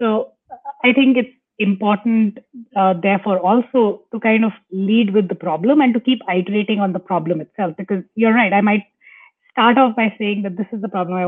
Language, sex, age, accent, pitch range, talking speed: English, female, 30-49, Indian, 185-225 Hz, 200 wpm